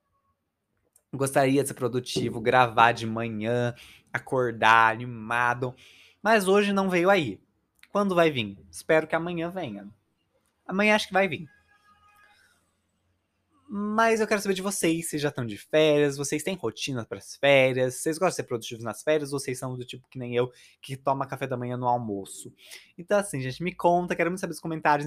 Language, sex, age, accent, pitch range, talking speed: Portuguese, male, 20-39, Brazilian, 130-175 Hz, 175 wpm